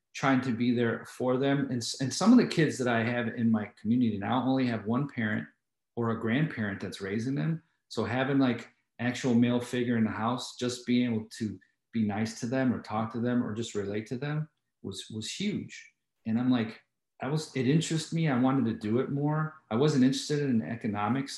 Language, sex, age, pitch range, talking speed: English, male, 40-59, 115-145 Hz, 220 wpm